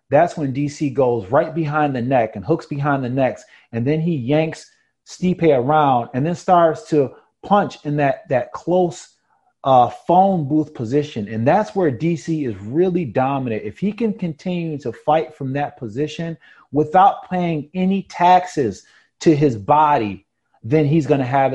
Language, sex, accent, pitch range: English, male, American, 125-160 Hz